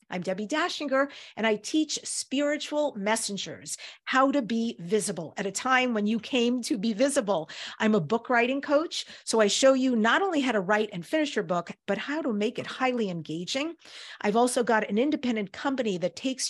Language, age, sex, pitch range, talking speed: English, 50-69, female, 195-255 Hz, 195 wpm